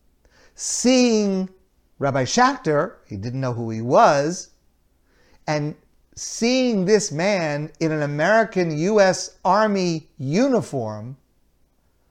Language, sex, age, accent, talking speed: English, male, 50-69, American, 95 wpm